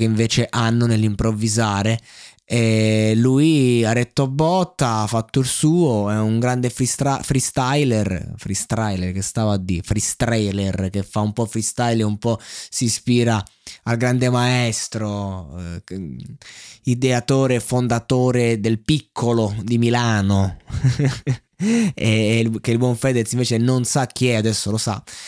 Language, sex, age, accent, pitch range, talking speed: Italian, male, 20-39, native, 110-140 Hz, 135 wpm